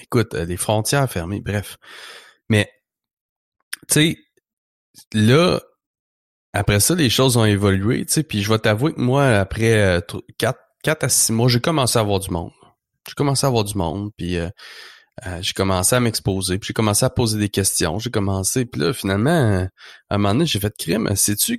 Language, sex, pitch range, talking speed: French, male, 100-135 Hz, 190 wpm